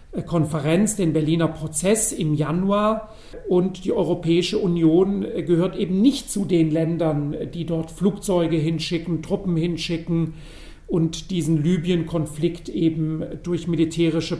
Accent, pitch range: German, 160-180 Hz